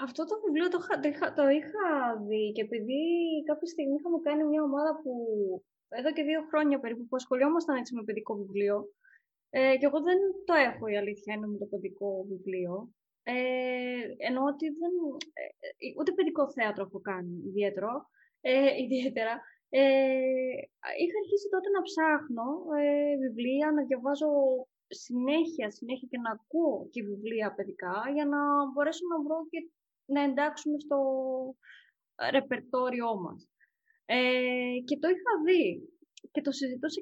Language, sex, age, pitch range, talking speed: Greek, female, 20-39, 235-315 Hz, 145 wpm